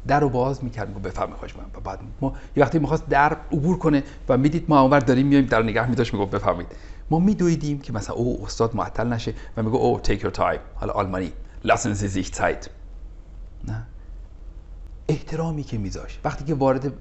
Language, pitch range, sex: Persian, 90-140 Hz, male